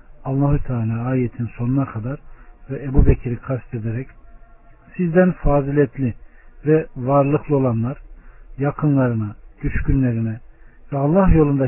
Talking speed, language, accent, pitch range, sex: 105 wpm, Turkish, native, 115-145 Hz, male